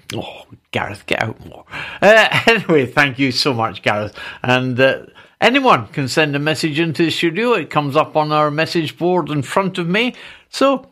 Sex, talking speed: male, 180 wpm